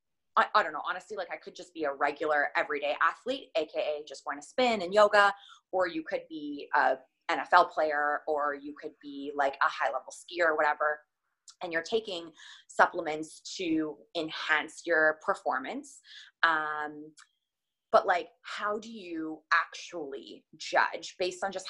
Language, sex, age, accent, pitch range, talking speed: English, female, 20-39, American, 150-180 Hz, 160 wpm